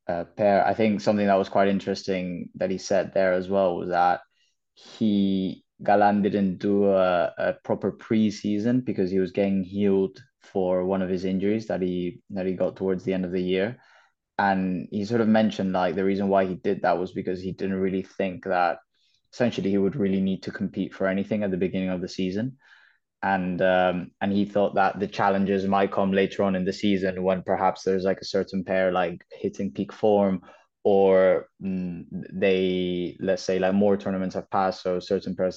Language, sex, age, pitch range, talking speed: English, male, 20-39, 95-100 Hz, 200 wpm